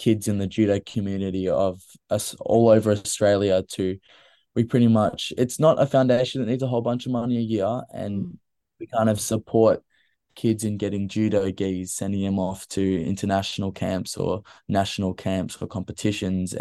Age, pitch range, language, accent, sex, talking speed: 20-39, 95-115 Hz, English, Australian, male, 175 wpm